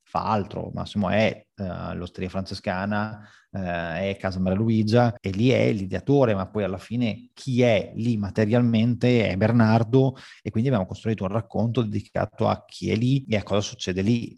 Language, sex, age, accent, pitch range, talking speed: Italian, male, 30-49, native, 105-120 Hz, 175 wpm